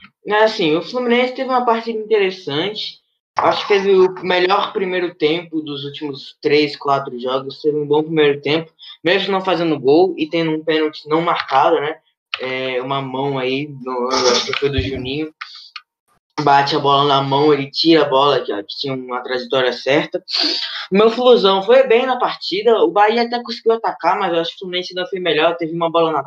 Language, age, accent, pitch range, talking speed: Portuguese, 10-29, Brazilian, 155-215 Hz, 190 wpm